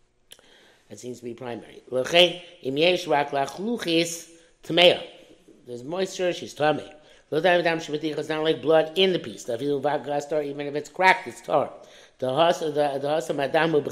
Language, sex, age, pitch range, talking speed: English, male, 60-79, 135-175 Hz, 95 wpm